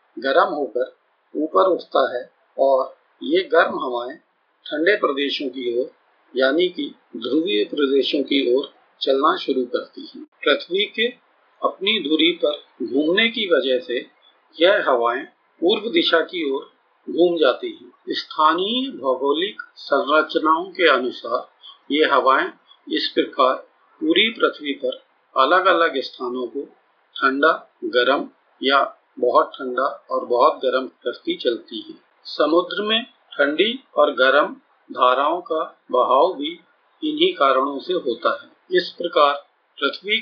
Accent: native